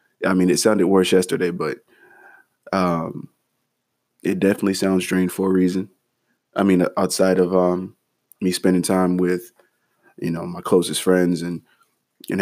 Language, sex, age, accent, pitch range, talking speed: English, male, 20-39, American, 90-100 Hz, 150 wpm